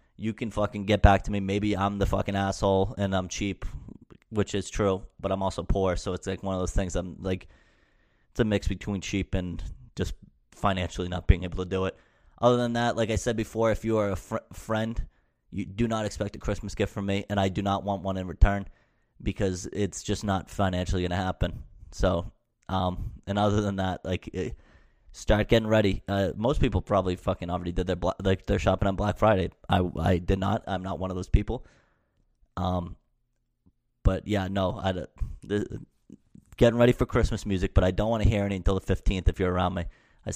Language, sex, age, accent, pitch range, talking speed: English, male, 20-39, American, 90-105 Hz, 210 wpm